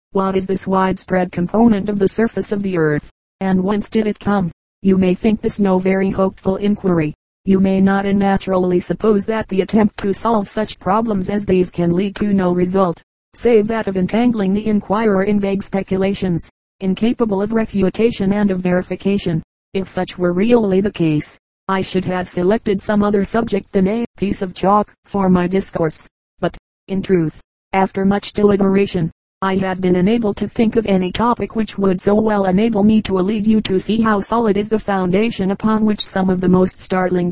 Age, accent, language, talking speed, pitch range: 40-59, American, English, 190 wpm, 185-210 Hz